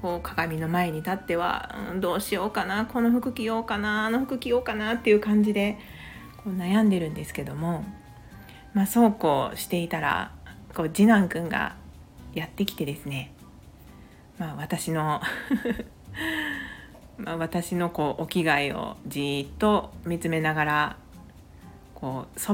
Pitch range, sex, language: 150-210 Hz, female, Japanese